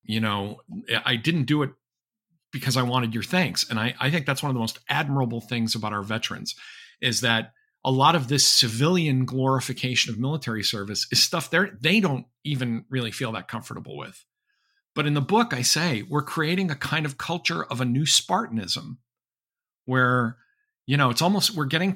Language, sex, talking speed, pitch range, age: English, male, 190 wpm, 120-160 Hz, 50-69